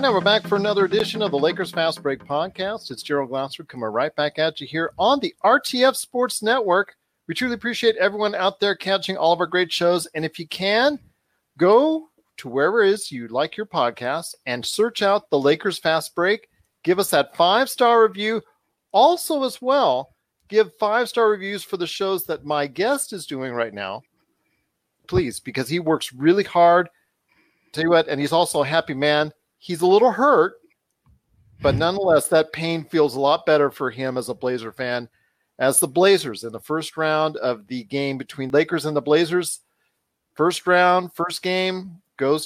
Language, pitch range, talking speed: English, 145-195 Hz, 185 wpm